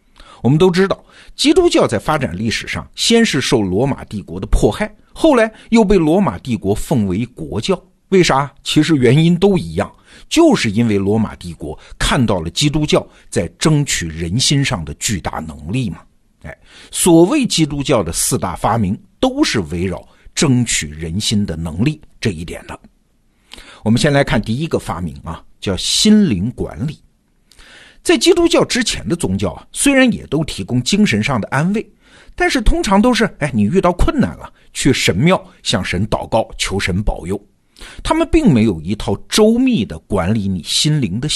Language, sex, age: Chinese, male, 50-69